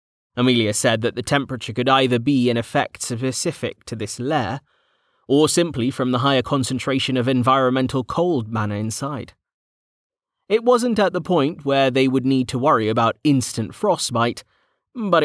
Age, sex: 30-49, male